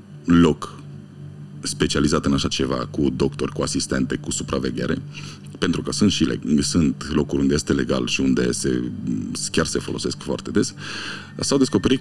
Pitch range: 70-100 Hz